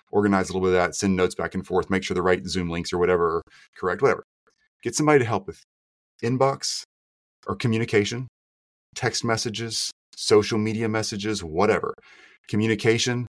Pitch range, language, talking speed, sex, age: 95-125 Hz, English, 160 wpm, male, 30-49